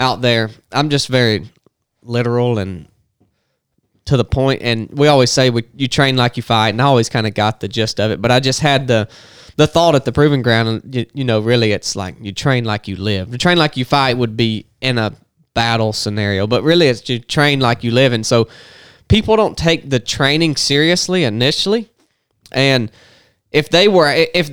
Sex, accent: male, American